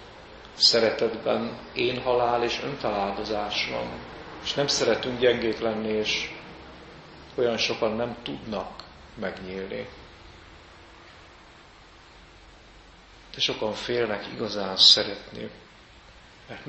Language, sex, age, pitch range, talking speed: Hungarian, male, 40-59, 100-125 Hz, 85 wpm